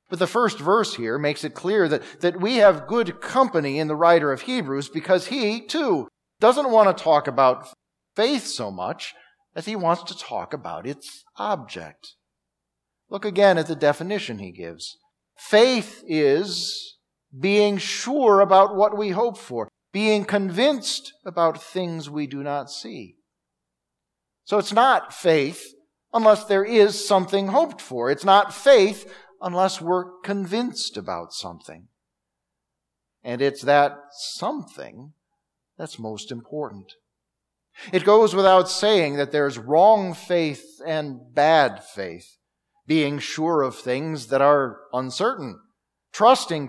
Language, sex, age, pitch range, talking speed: English, male, 50-69, 145-210 Hz, 135 wpm